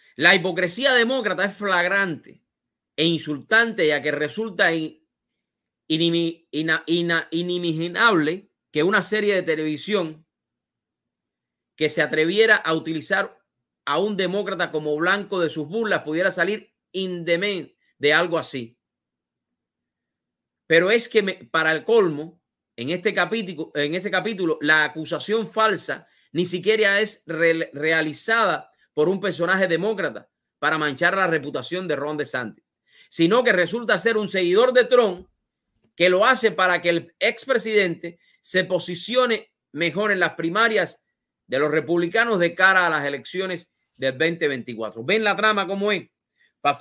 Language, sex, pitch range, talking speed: English, male, 160-205 Hz, 130 wpm